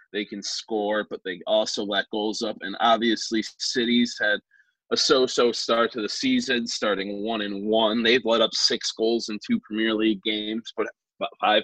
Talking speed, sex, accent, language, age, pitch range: 170 wpm, male, American, English, 20-39, 100-120 Hz